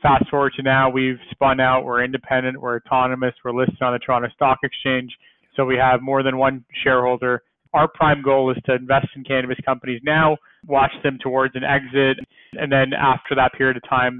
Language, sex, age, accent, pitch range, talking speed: English, male, 20-39, American, 125-135 Hz, 200 wpm